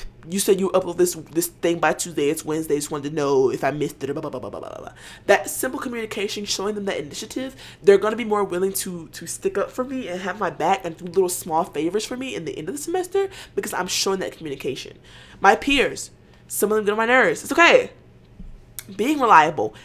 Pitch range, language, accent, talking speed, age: 175-250 Hz, English, American, 245 wpm, 20-39